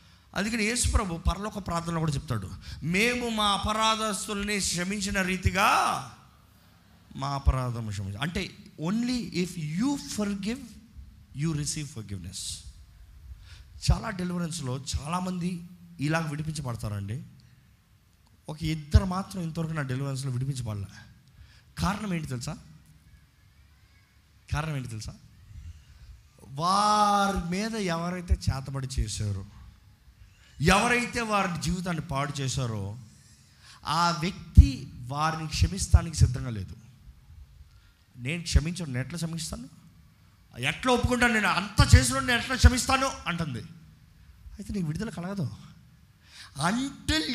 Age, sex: 20-39, male